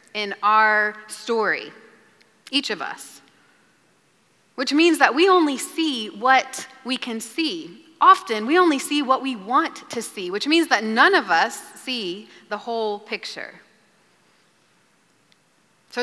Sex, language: female, English